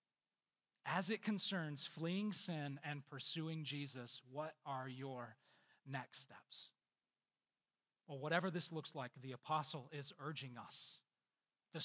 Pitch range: 155-195 Hz